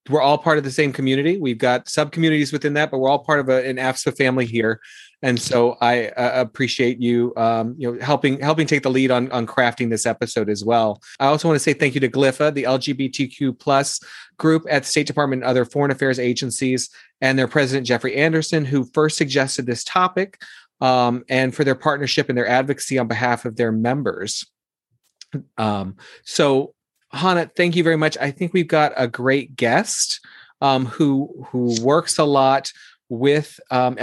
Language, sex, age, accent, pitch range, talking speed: English, male, 30-49, American, 120-145 Hz, 195 wpm